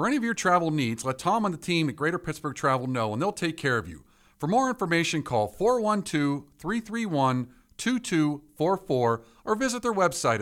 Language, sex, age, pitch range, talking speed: English, male, 50-69, 125-180 Hz, 180 wpm